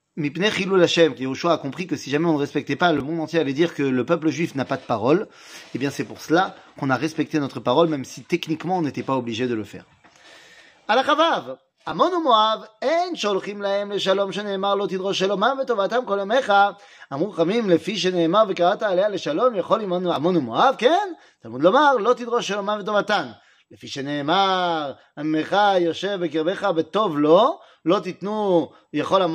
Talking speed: 90 wpm